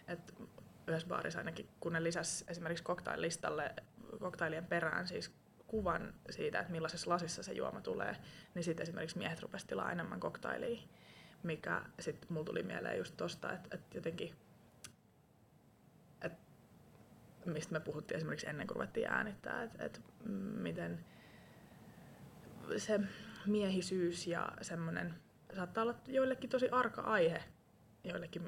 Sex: female